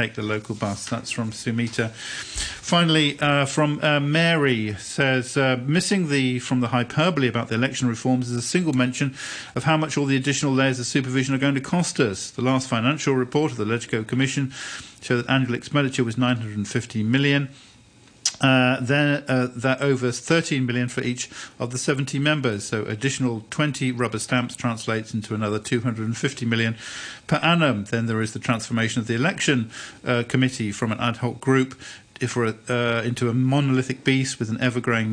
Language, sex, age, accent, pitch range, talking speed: English, male, 50-69, British, 115-135 Hz, 180 wpm